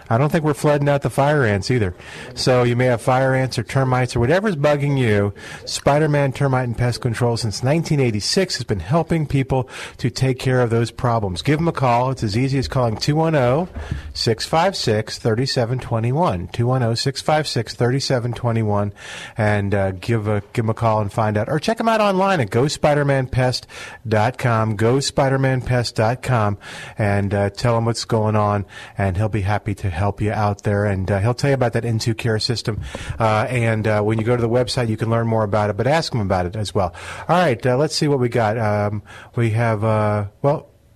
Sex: male